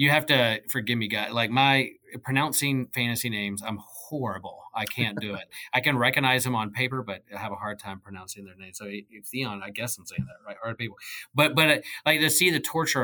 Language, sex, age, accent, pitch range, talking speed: English, male, 30-49, American, 105-130 Hz, 230 wpm